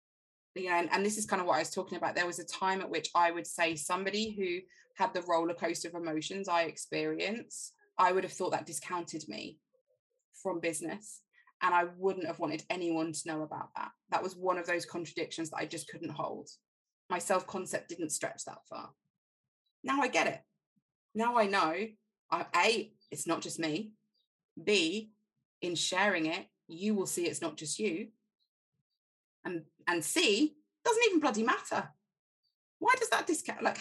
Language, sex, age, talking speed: English, female, 20-39, 185 wpm